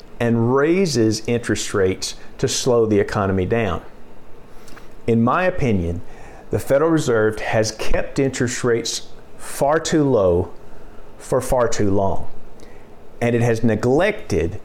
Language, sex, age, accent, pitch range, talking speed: English, male, 50-69, American, 100-130 Hz, 125 wpm